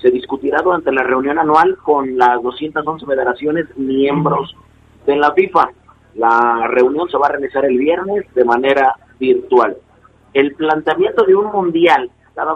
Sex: male